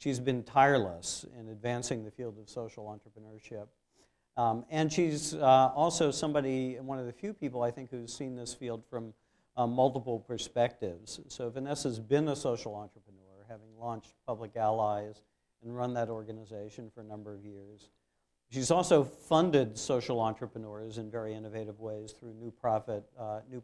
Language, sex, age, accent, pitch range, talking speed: English, male, 50-69, American, 115-135 Hz, 160 wpm